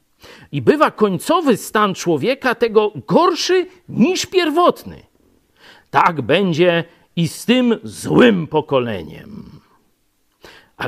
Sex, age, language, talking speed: male, 50-69, Polish, 95 wpm